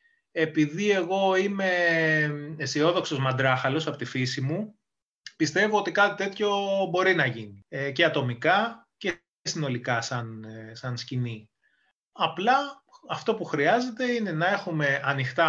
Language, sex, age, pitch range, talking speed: Greek, male, 30-49, 130-195 Hz, 115 wpm